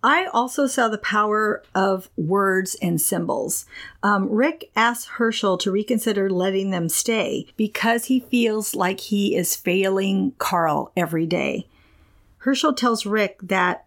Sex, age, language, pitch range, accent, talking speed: female, 40-59, English, 190-230 Hz, American, 140 wpm